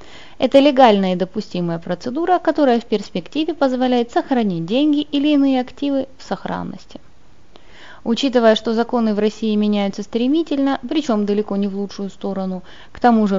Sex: female